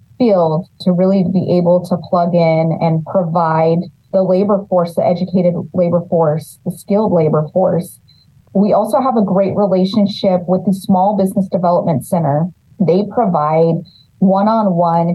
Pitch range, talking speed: 175-200 Hz, 145 wpm